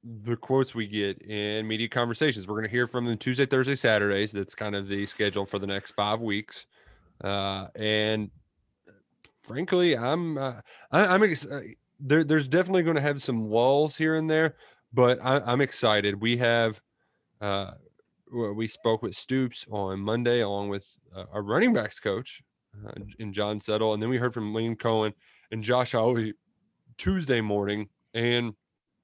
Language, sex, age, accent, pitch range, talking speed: English, male, 20-39, American, 105-135 Hz, 160 wpm